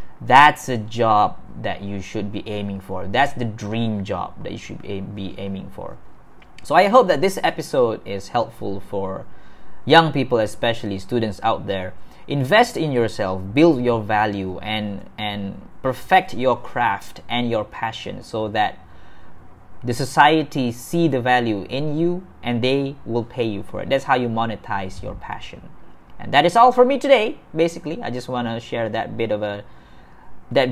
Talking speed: 170 wpm